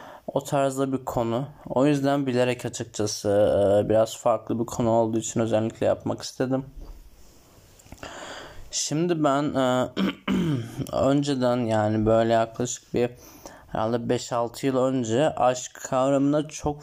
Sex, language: male, Turkish